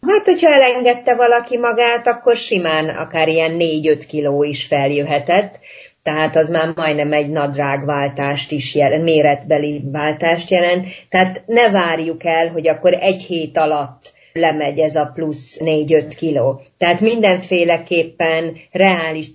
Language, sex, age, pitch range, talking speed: Hungarian, female, 30-49, 150-180 Hz, 130 wpm